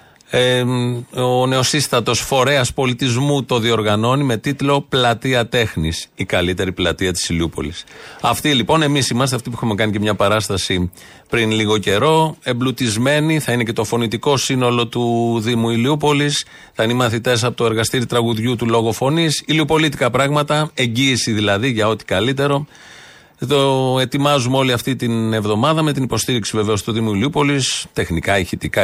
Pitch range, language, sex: 115-140 Hz, Greek, male